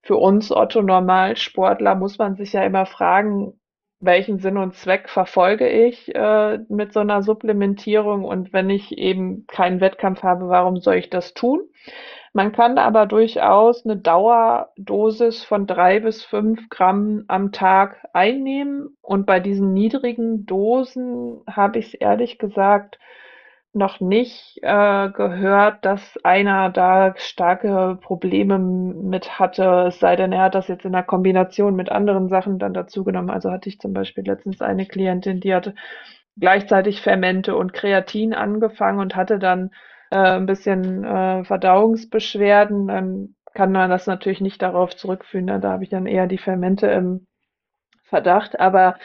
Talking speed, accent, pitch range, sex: 155 wpm, German, 185-215 Hz, female